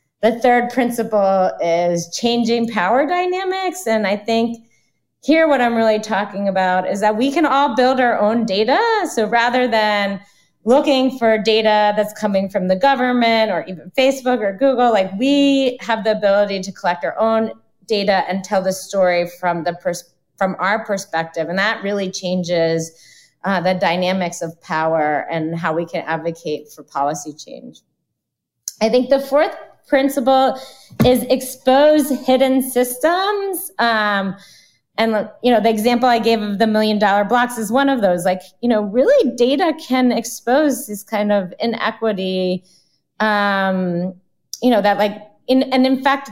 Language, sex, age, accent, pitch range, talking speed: English, female, 30-49, American, 185-245 Hz, 160 wpm